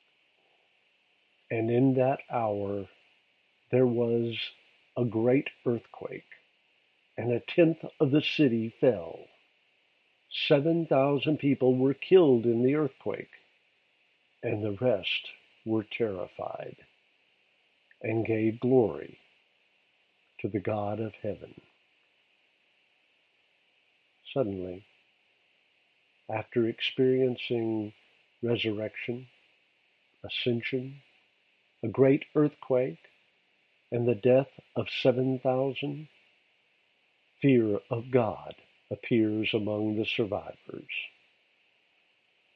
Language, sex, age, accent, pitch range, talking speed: English, male, 50-69, American, 110-130 Hz, 80 wpm